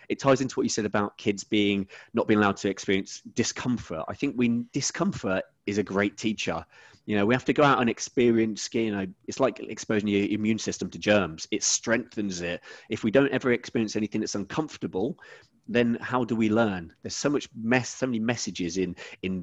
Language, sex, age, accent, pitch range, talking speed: English, male, 30-49, British, 95-115 Hz, 205 wpm